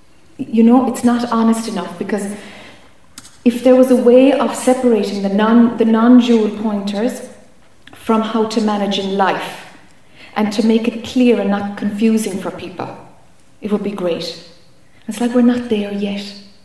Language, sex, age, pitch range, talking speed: English, female, 30-49, 210-265 Hz, 160 wpm